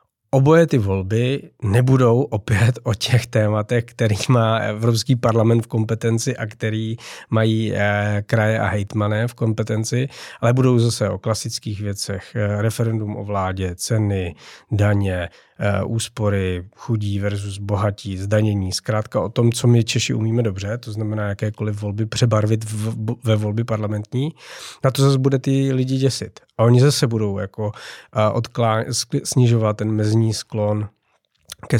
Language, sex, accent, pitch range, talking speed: Czech, male, native, 105-120 Hz, 140 wpm